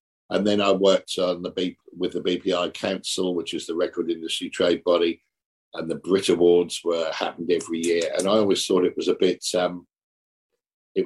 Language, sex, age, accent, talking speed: English, male, 50-69, British, 195 wpm